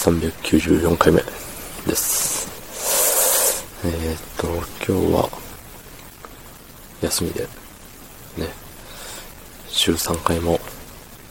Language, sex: Japanese, male